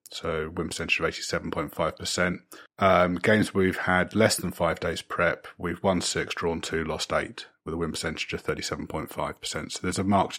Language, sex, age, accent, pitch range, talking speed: English, male, 30-49, British, 85-100 Hz, 180 wpm